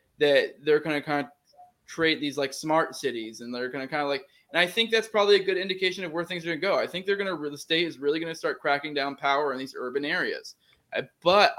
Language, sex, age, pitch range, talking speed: English, male, 20-39, 135-170 Hz, 275 wpm